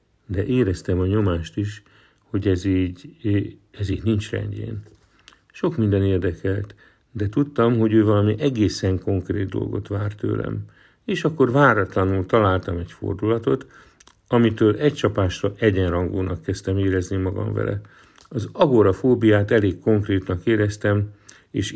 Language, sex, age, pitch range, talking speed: Hungarian, male, 50-69, 100-115 Hz, 125 wpm